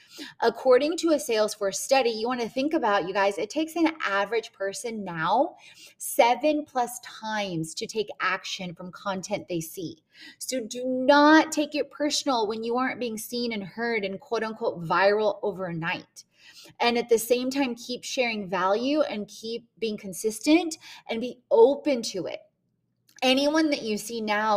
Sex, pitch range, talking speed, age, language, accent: female, 200-255 Hz, 165 wpm, 20-39, English, American